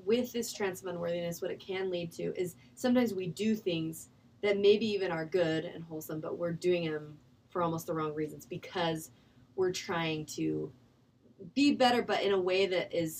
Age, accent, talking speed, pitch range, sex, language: 20-39, American, 195 wpm, 160-190 Hz, female, English